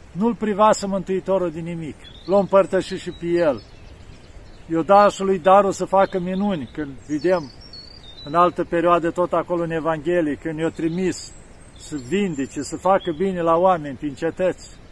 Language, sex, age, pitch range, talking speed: Romanian, male, 50-69, 145-180 Hz, 150 wpm